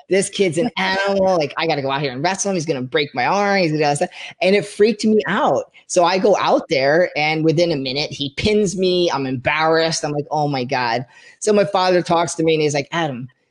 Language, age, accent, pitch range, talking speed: English, 20-39, American, 145-195 Hz, 260 wpm